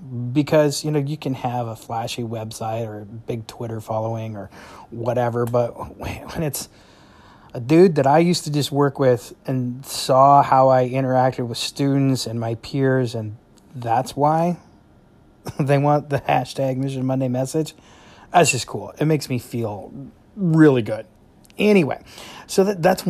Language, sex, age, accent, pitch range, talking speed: English, male, 30-49, American, 120-150 Hz, 155 wpm